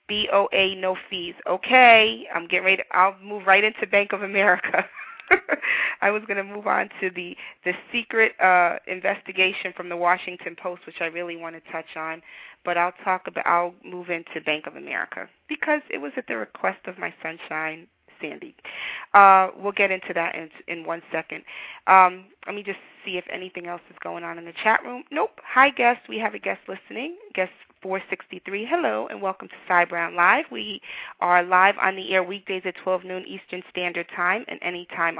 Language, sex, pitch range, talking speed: English, female, 175-205 Hz, 195 wpm